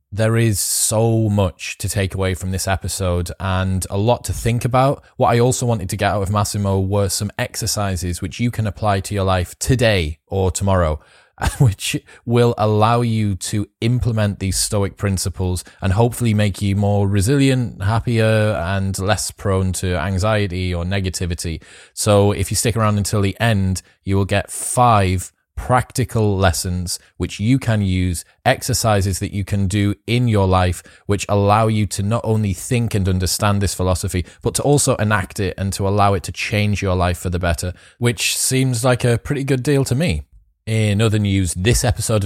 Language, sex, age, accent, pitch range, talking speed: English, male, 20-39, British, 95-110 Hz, 180 wpm